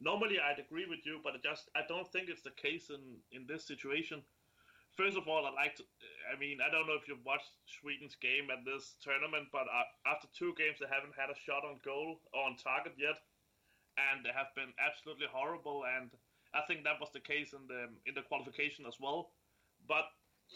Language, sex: English, male